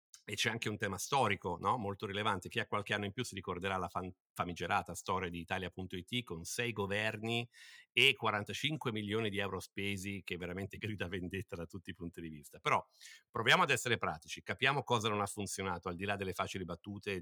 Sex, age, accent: male, 50-69, native